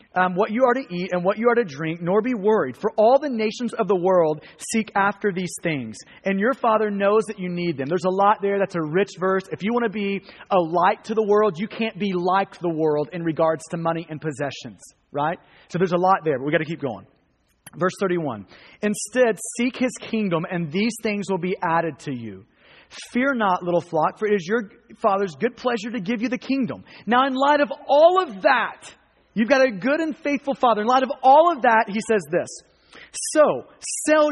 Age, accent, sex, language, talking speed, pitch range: 30-49, American, male, English, 230 wpm, 175-235 Hz